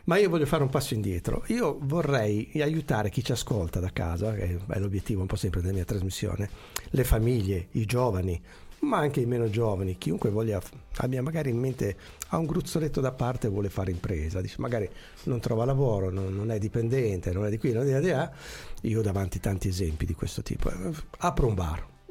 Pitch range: 95-135 Hz